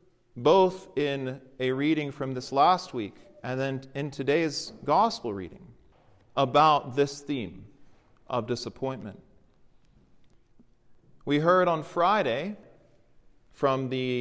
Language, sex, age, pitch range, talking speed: English, male, 40-59, 130-180 Hz, 105 wpm